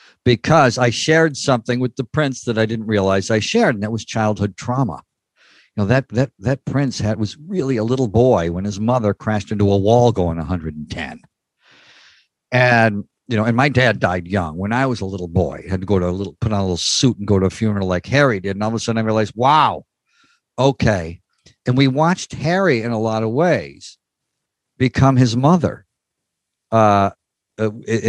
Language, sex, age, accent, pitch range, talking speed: English, male, 50-69, American, 110-140 Hz, 205 wpm